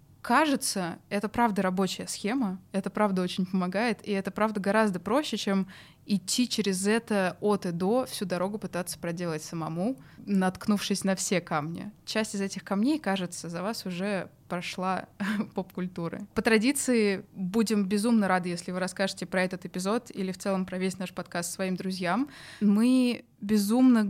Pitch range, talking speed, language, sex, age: 185-215 Hz, 155 wpm, Russian, female, 20-39